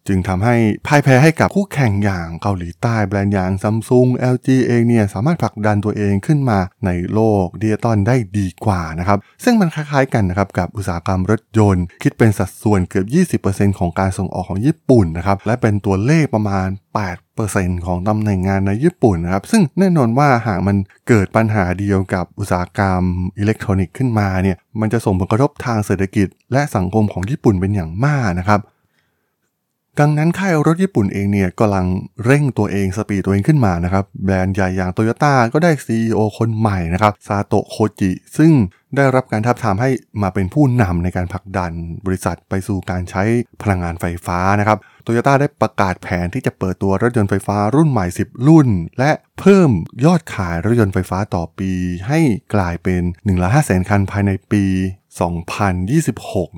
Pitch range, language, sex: 95-120 Hz, Thai, male